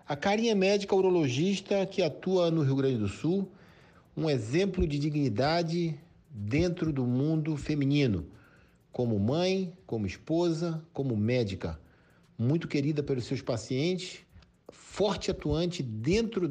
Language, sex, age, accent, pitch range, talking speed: Portuguese, male, 50-69, Brazilian, 125-180 Hz, 120 wpm